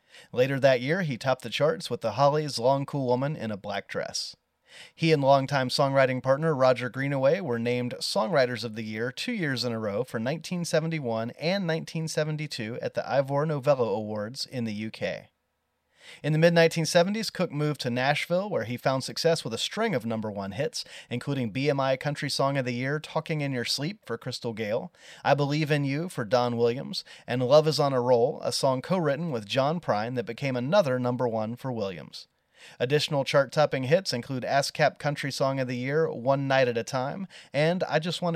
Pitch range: 125-165 Hz